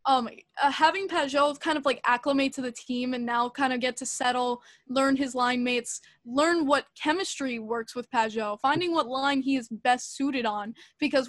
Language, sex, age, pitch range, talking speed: English, female, 10-29, 240-275 Hz, 195 wpm